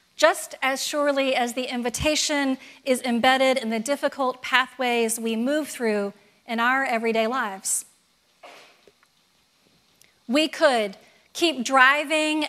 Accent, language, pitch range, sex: American, English, 245-300 Hz, female